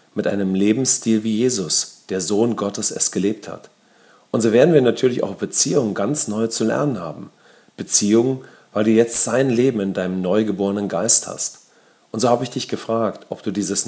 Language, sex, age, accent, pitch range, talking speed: English, male, 40-59, German, 95-115 Hz, 185 wpm